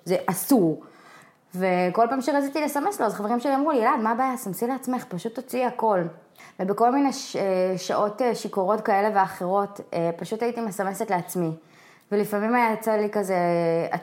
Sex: female